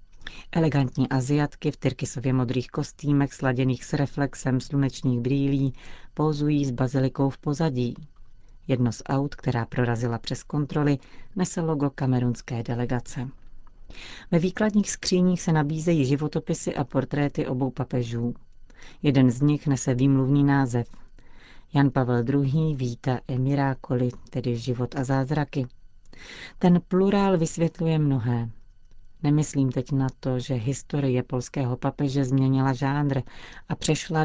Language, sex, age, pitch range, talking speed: Czech, female, 40-59, 130-150 Hz, 125 wpm